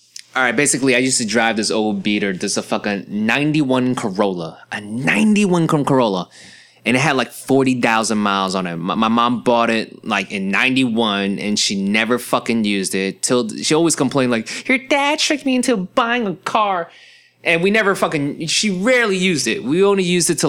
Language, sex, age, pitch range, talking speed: English, male, 20-39, 100-150 Hz, 195 wpm